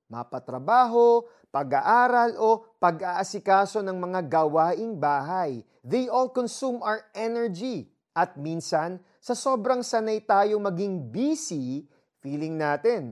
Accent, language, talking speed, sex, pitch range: native, Filipino, 105 wpm, male, 160-230 Hz